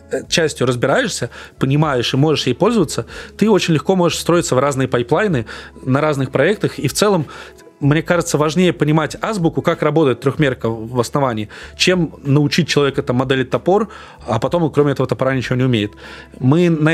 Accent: native